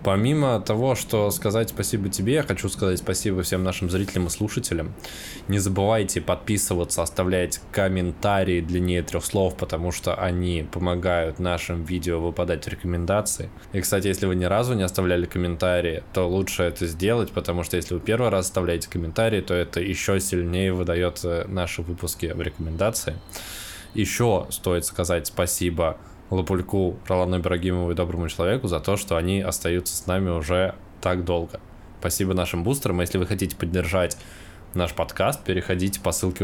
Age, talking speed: 20-39, 155 wpm